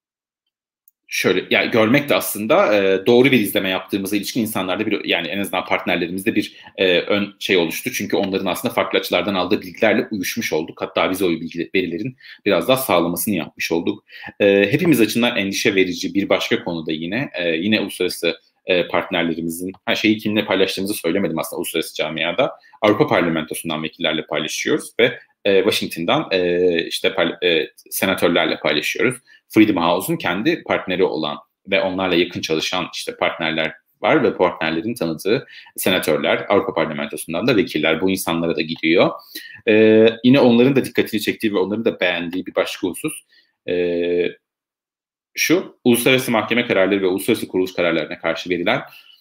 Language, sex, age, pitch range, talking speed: Turkish, male, 40-59, 85-115 Hz, 145 wpm